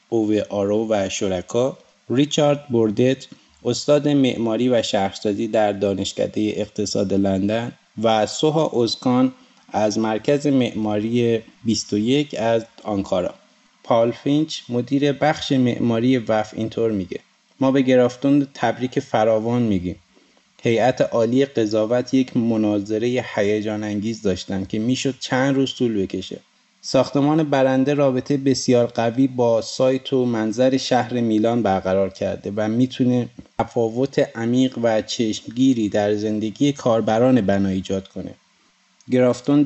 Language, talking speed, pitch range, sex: Persian, 115 wpm, 110-135 Hz, male